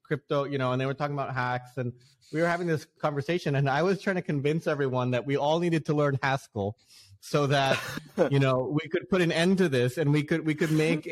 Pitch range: 115-140 Hz